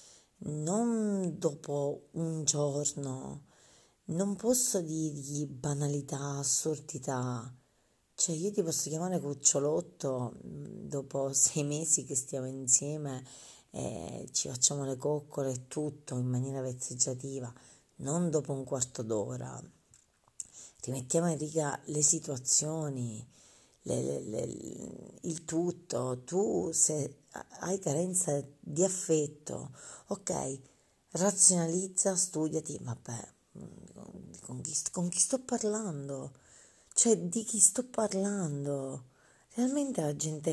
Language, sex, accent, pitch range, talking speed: Italian, female, native, 135-190 Hz, 100 wpm